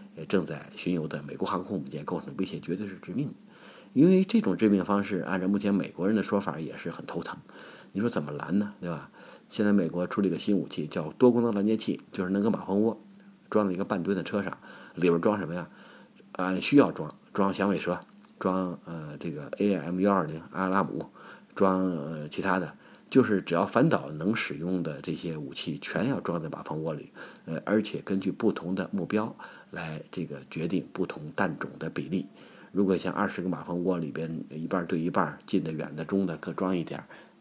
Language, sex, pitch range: Chinese, male, 85-100 Hz